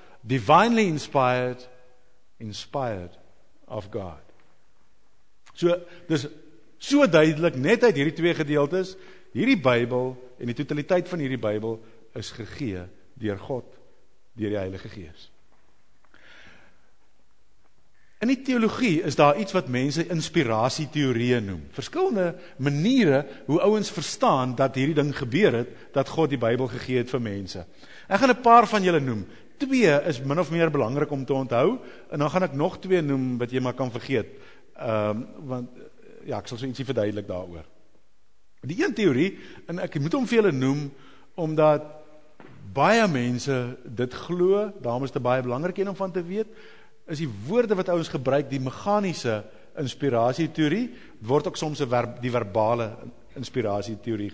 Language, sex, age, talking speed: English, male, 60-79, 150 wpm